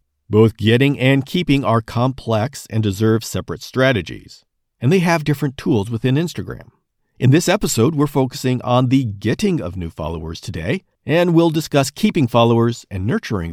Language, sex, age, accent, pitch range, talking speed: English, male, 50-69, American, 105-145 Hz, 160 wpm